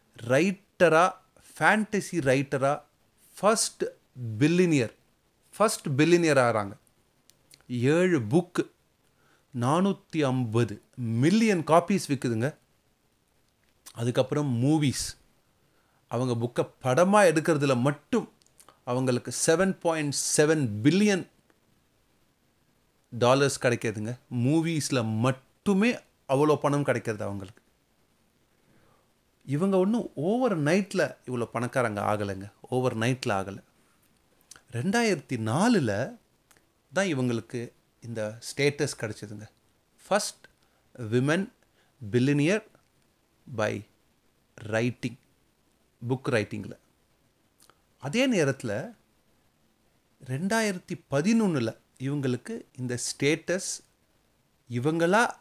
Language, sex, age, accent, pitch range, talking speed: Tamil, male, 30-49, native, 120-165 Hz, 70 wpm